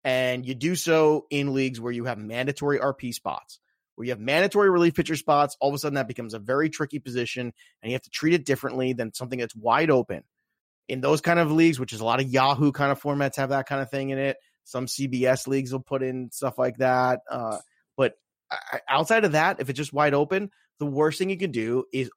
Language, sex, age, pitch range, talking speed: English, male, 30-49, 120-150 Hz, 240 wpm